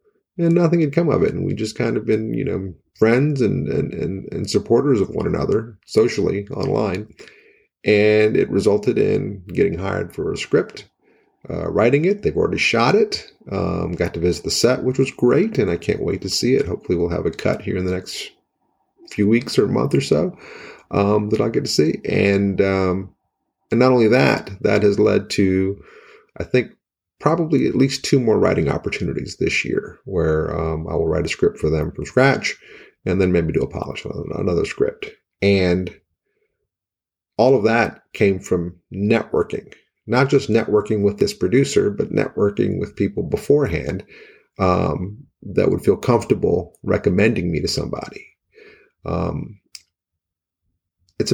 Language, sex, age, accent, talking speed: English, male, 30-49, American, 175 wpm